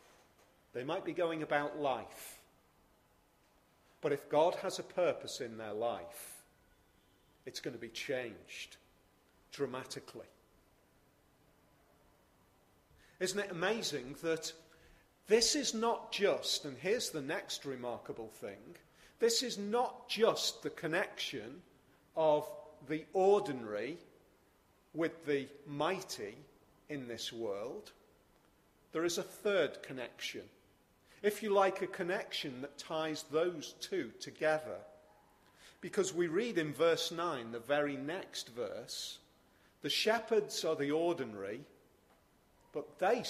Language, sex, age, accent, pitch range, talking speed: English, male, 40-59, British, 145-210 Hz, 115 wpm